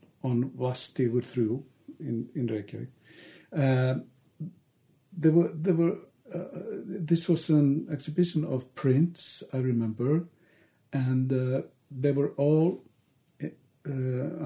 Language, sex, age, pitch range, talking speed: English, male, 60-79, 130-160 Hz, 115 wpm